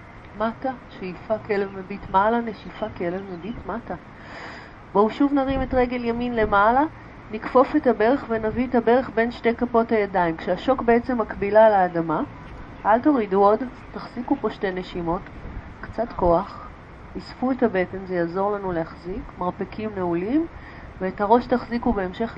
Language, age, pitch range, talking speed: Hebrew, 30-49, 190-235 Hz, 140 wpm